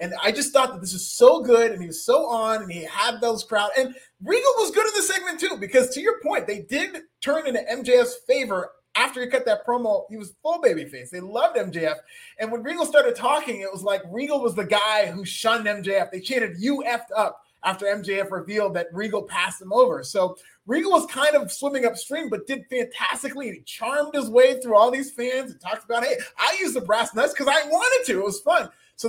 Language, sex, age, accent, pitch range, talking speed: English, male, 30-49, American, 205-295 Hz, 230 wpm